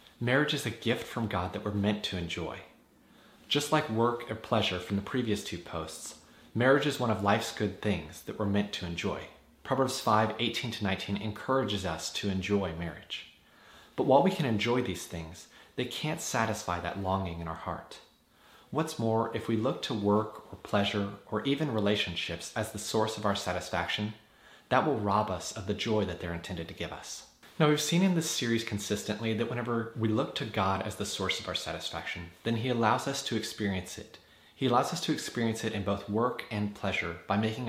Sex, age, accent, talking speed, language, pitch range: male, 30-49, American, 200 wpm, English, 95-115 Hz